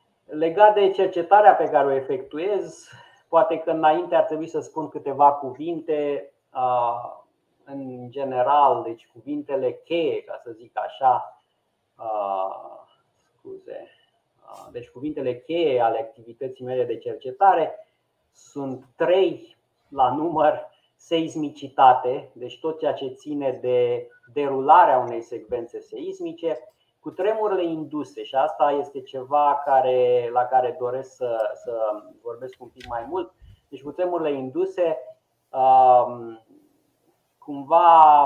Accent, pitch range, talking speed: native, 130-170 Hz, 105 wpm